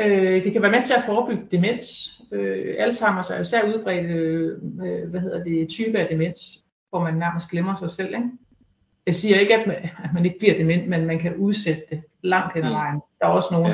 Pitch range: 165-200 Hz